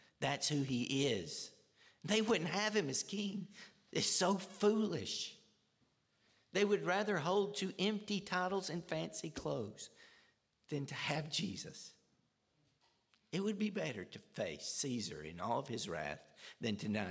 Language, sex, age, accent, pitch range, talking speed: English, male, 50-69, American, 110-175 Hz, 145 wpm